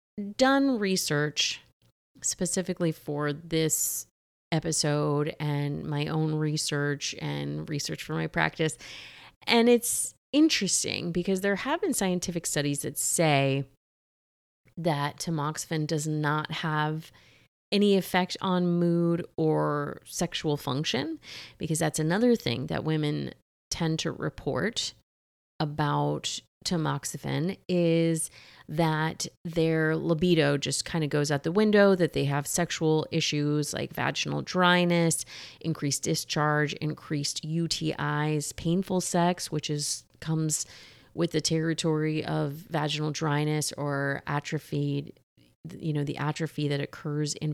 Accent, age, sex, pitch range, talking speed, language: American, 30-49, female, 145-175 Hz, 115 wpm, English